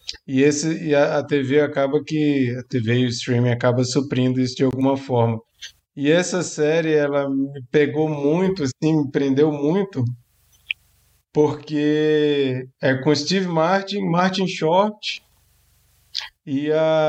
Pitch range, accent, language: 135-165 Hz, Brazilian, Portuguese